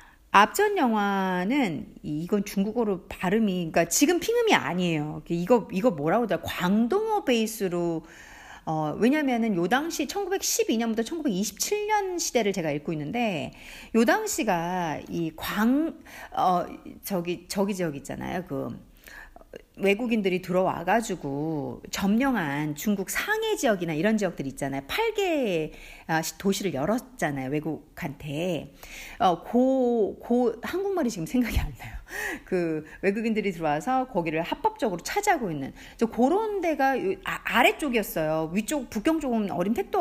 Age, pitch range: 50-69, 180-285 Hz